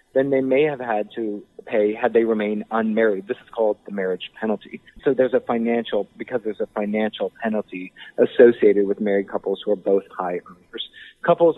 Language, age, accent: English, 30-49, American